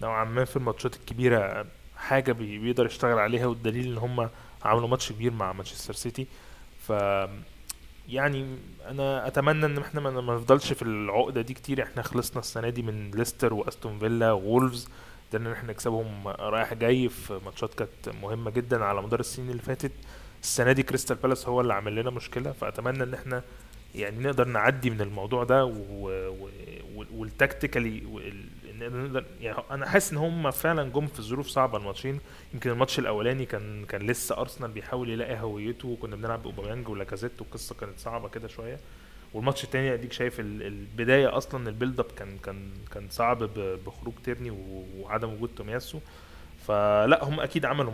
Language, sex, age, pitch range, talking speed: Arabic, male, 20-39, 105-130 Hz, 160 wpm